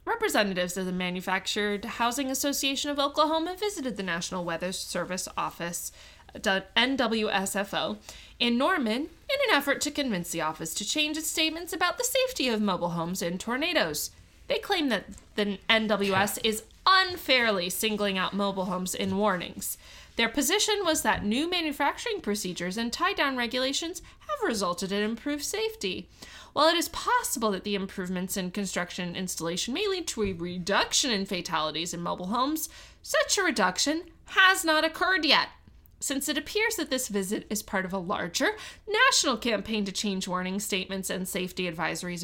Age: 20-39